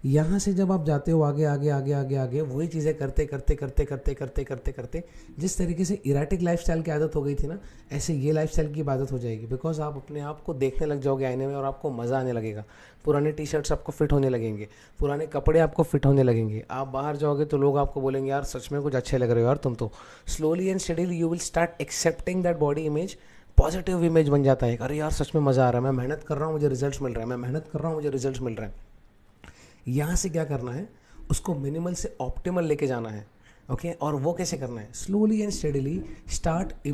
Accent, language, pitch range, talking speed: Indian, English, 135-165 Hz, 130 wpm